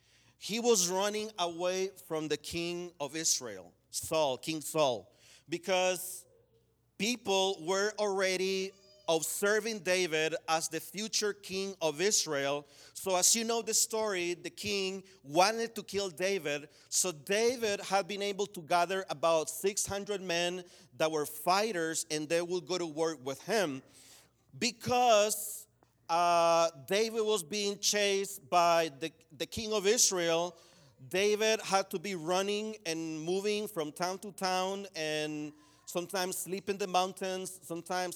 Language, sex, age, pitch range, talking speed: English, male, 40-59, 160-200 Hz, 140 wpm